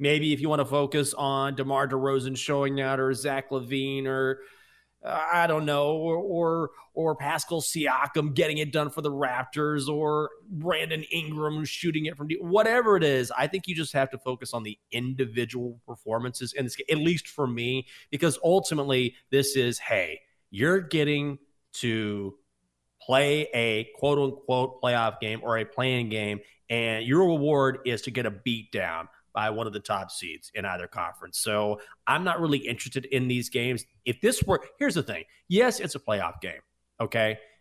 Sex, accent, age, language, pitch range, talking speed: male, American, 30-49, English, 115-150 Hz, 175 wpm